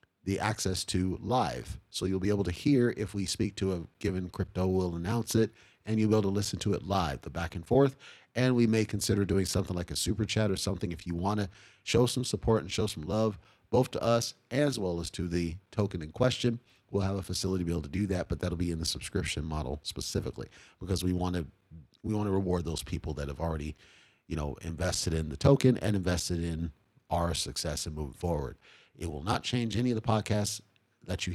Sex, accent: male, American